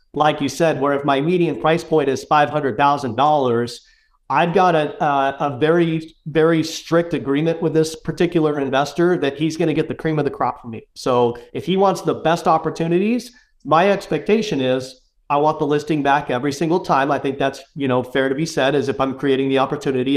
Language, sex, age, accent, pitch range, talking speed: English, male, 40-59, American, 140-170 Hz, 205 wpm